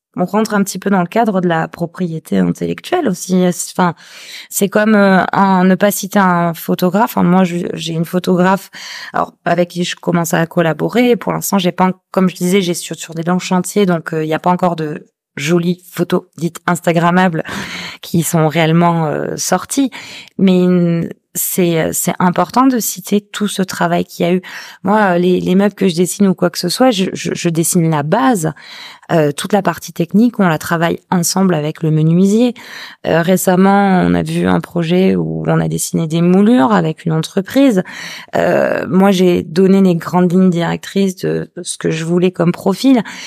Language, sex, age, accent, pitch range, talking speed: French, female, 20-39, French, 170-195 Hz, 190 wpm